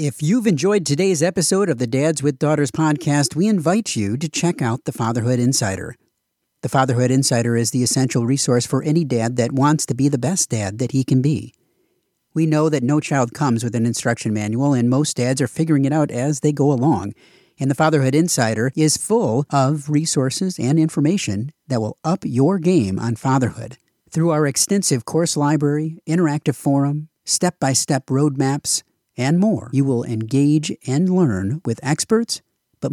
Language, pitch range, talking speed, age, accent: English, 125-160 Hz, 180 wpm, 50-69, American